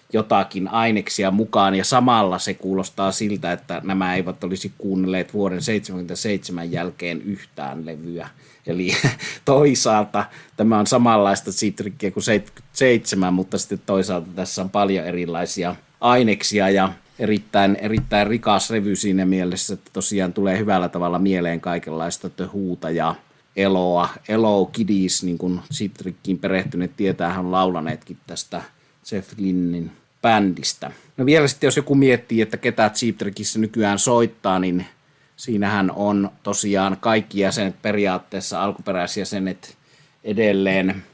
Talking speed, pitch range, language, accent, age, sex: 125 wpm, 90-110 Hz, Finnish, native, 30-49, male